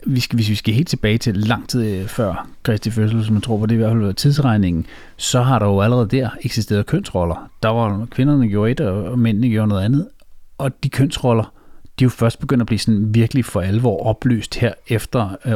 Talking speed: 210 wpm